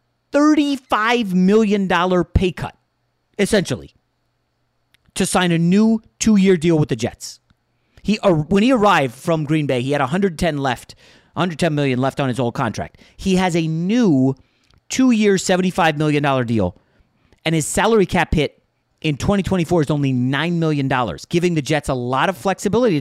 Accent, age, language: American, 30-49, English